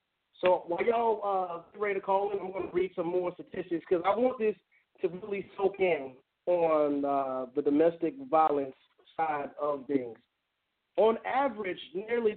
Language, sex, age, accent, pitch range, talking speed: English, male, 30-49, American, 180-235 Hz, 160 wpm